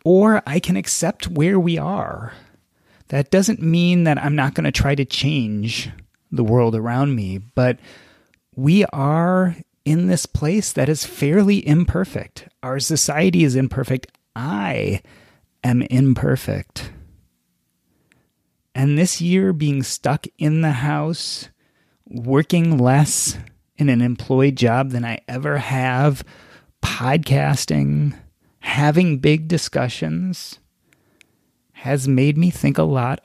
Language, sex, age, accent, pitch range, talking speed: English, male, 30-49, American, 125-165 Hz, 120 wpm